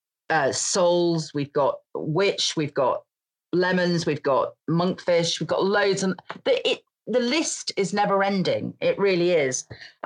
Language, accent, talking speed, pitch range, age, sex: English, British, 155 wpm, 155-210 Hz, 40-59, female